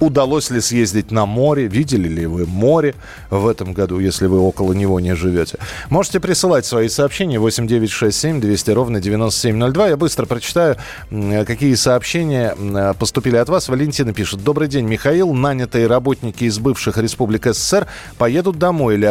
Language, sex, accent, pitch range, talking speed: Russian, male, native, 100-145 Hz, 150 wpm